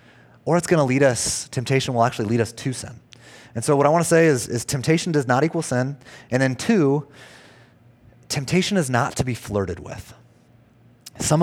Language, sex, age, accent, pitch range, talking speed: English, male, 30-49, American, 115-155 Hz, 200 wpm